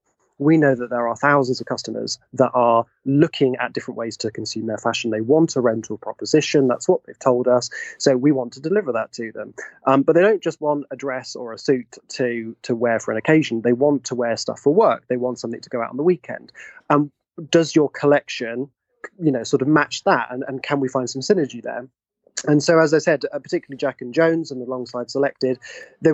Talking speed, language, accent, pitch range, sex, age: 230 wpm, English, British, 120-150 Hz, male, 20-39